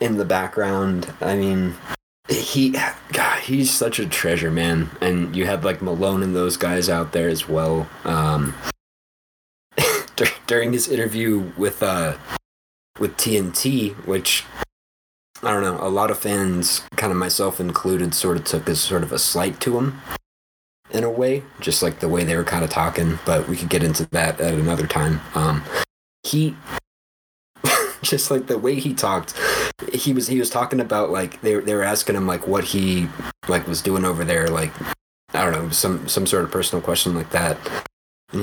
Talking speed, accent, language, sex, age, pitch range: 180 wpm, American, English, male, 30-49, 85-110 Hz